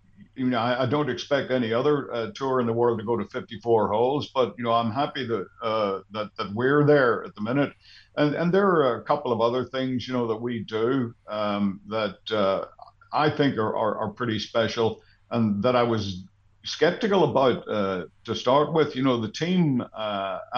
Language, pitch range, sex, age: English, 110-135 Hz, male, 60-79